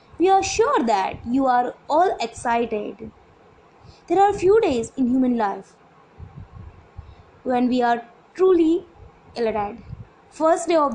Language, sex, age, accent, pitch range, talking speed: Hindi, female, 20-39, native, 230-335 Hz, 125 wpm